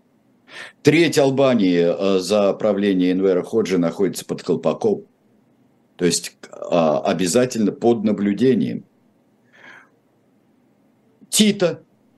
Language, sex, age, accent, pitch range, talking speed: Russian, male, 60-79, native, 100-135 Hz, 75 wpm